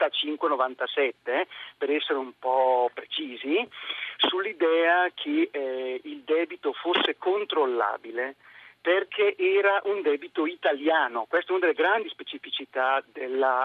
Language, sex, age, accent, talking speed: Italian, male, 40-59, native, 115 wpm